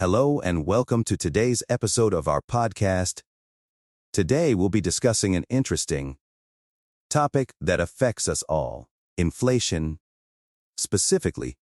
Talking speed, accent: 115 wpm, American